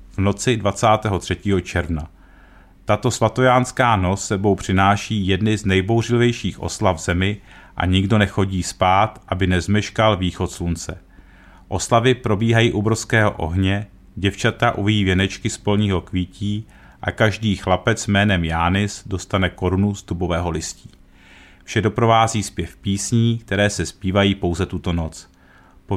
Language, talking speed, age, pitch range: Czech, 125 wpm, 40-59, 90-110 Hz